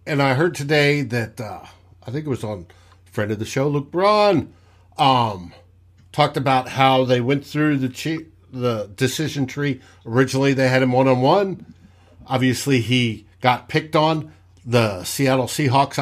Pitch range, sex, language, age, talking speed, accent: 105-155 Hz, male, English, 60-79, 155 wpm, American